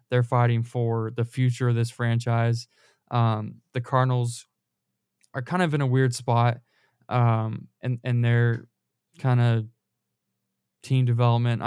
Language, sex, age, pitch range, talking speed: English, male, 20-39, 115-125 Hz, 135 wpm